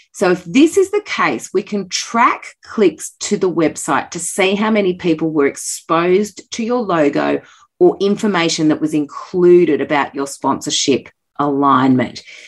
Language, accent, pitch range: English, Australian, 150-205 Hz